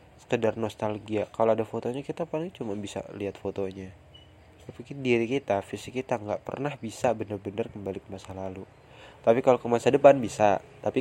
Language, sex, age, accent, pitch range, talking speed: Indonesian, male, 20-39, native, 100-120 Hz, 170 wpm